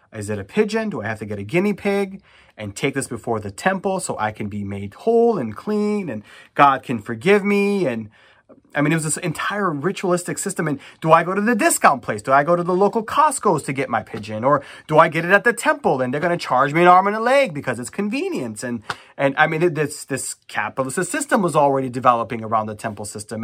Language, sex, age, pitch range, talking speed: English, male, 30-49, 110-180 Hz, 245 wpm